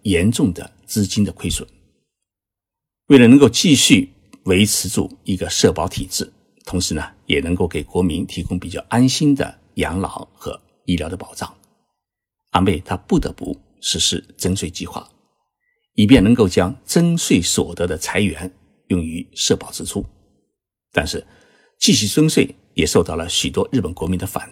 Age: 50-69